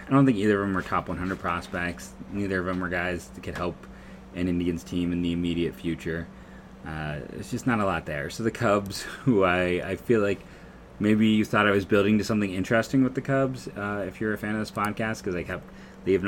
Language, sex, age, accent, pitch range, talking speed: English, male, 30-49, American, 90-105 Hz, 235 wpm